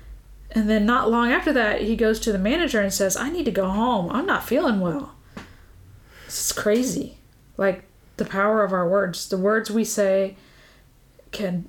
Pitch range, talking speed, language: 195-235 Hz, 185 wpm, English